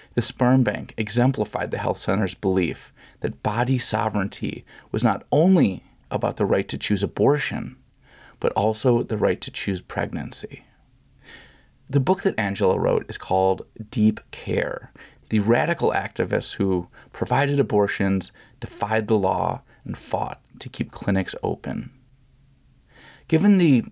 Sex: male